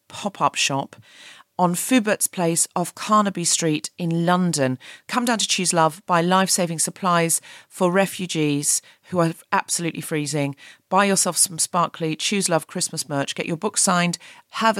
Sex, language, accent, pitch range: female, English, British, 160-205 Hz